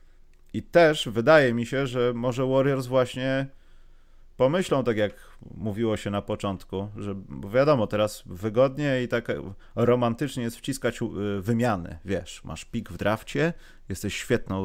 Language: Polish